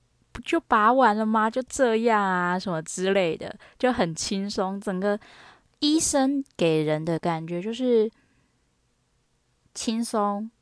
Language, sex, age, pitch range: Chinese, female, 10-29, 180-240 Hz